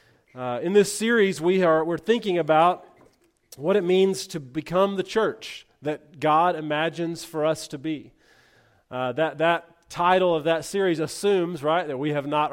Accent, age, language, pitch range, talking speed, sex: American, 40-59, English, 145-170 Hz, 175 wpm, male